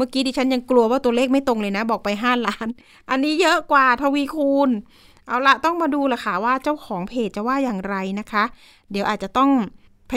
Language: Thai